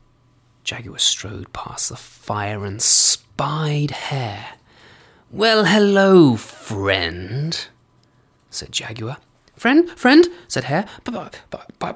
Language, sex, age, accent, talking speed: English, male, 20-39, British, 95 wpm